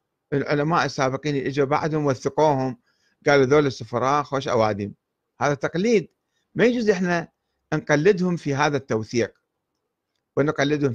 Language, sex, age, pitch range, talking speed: Arabic, male, 50-69, 120-160 Hz, 115 wpm